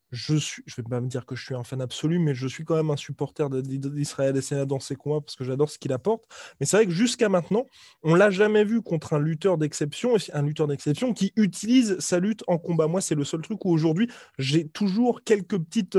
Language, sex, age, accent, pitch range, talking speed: French, male, 20-39, French, 145-195 Hz, 255 wpm